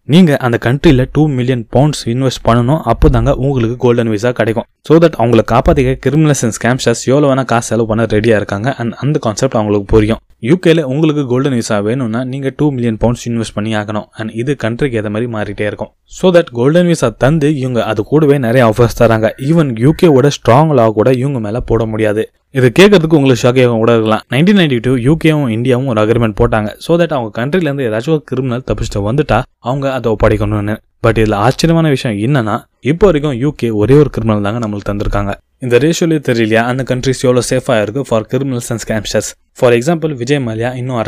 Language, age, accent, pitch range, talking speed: Tamil, 20-39, native, 110-140 Hz, 165 wpm